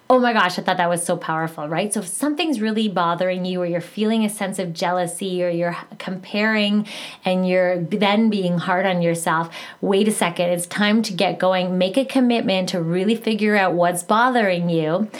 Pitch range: 180-220 Hz